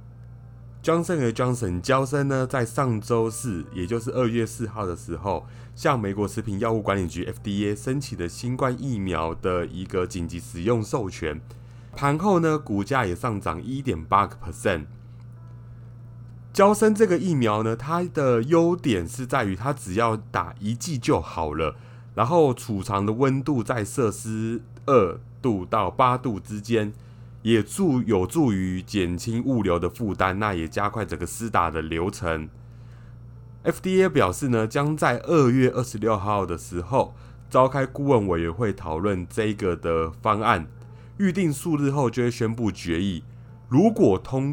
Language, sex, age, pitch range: Chinese, male, 30-49, 100-125 Hz